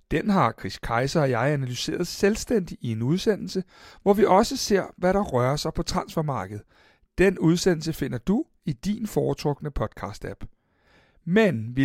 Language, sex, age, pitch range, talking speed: Danish, male, 60-79, 130-195 Hz, 155 wpm